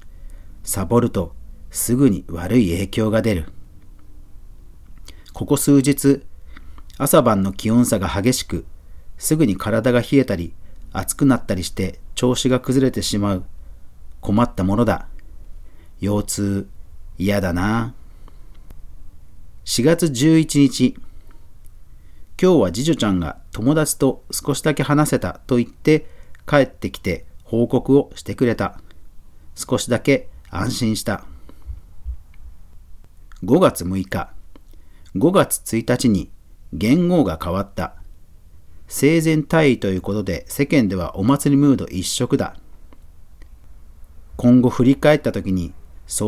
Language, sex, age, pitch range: Japanese, male, 40-59, 80-125 Hz